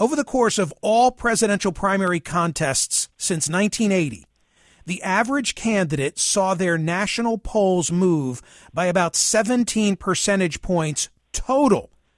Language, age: English, 40-59